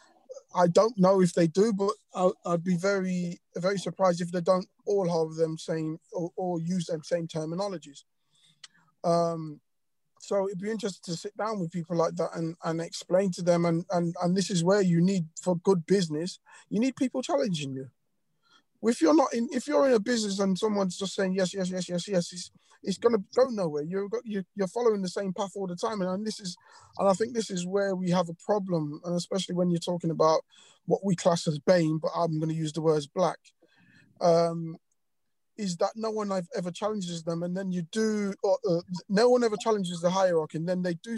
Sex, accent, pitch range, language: male, British, 170-215 Hz, English